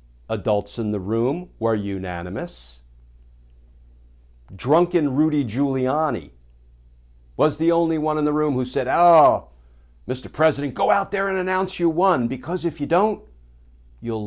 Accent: American